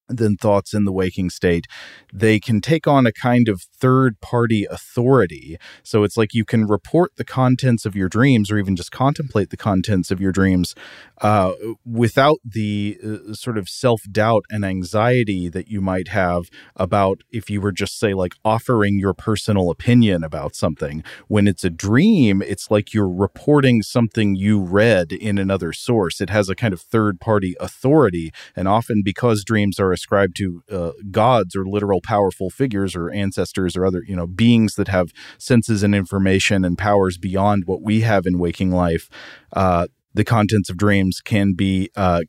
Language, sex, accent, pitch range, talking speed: English, male, American, 95-110 Hz, 175 wpm